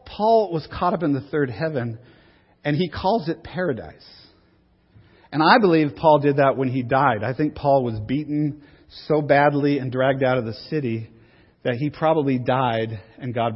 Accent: American